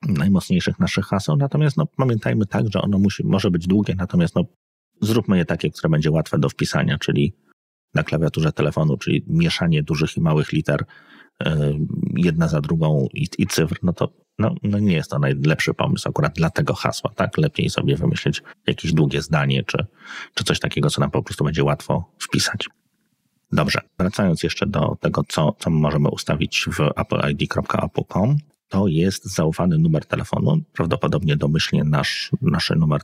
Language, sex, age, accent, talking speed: Polish, male, 30-49, native, 165 wpm